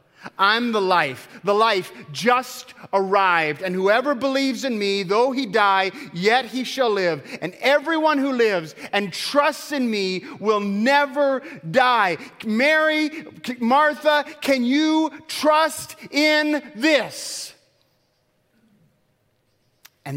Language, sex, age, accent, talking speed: English, male, 30-49, American, 115 wpm